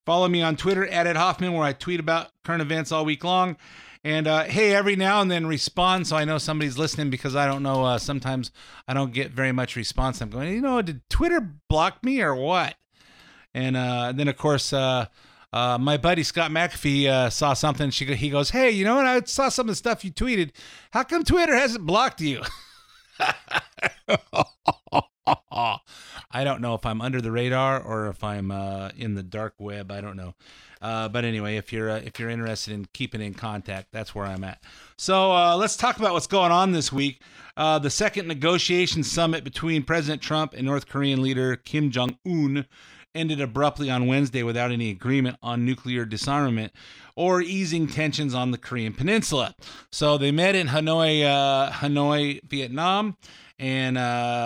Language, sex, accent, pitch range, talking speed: English, male, American, 125-170 Hz, 190 wpm